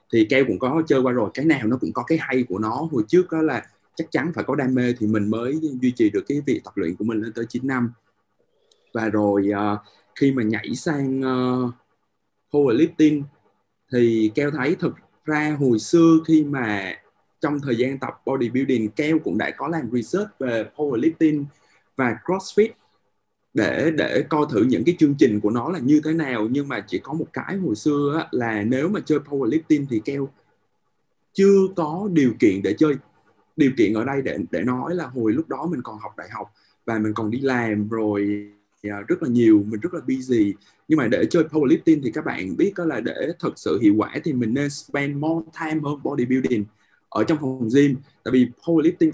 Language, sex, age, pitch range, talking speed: Vietnamese, male, 20-39, 115-160 Hz, 210 wpm